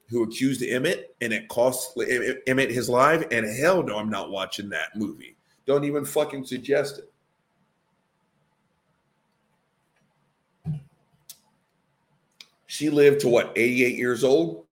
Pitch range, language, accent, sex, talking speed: 115-175 Hz, English, American, male, 120 wpm